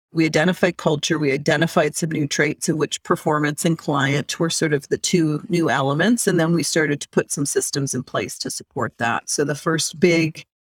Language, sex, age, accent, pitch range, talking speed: English, female, 40-59, American, 150-190 Hz, 210 wpm